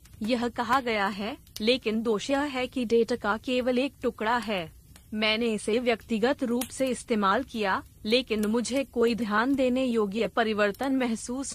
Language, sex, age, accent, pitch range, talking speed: Hindi, female, 30-49, native, 210-255 Hz, 150 wpm